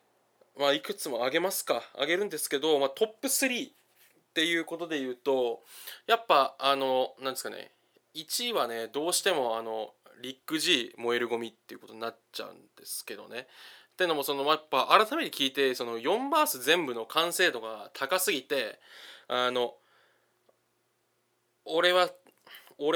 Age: 20-39